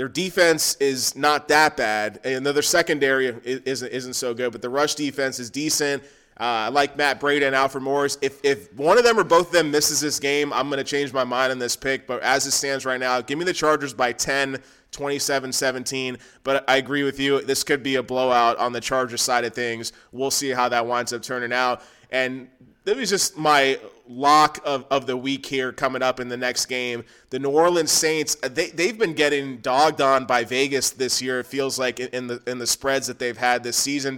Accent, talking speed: American, 230 wpm